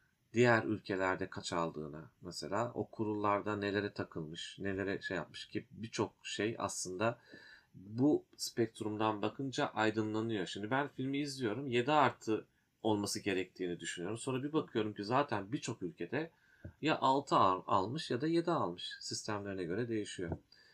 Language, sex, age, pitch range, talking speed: Turkish, male, 40-59, 100-120 Hz, 135 wpm